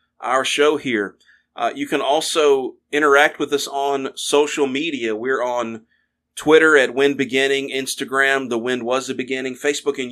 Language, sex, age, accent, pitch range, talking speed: English, male, 30-49, American, 125-145 Hz, 160 wpm